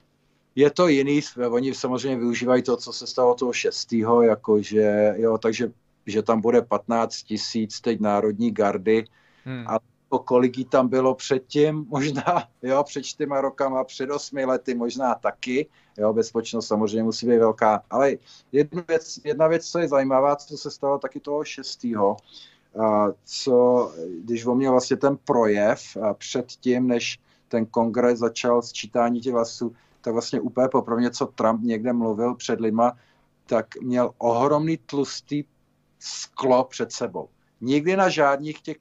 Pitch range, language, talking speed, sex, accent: 115-135 Hz, Czech, 140 wpm, male, native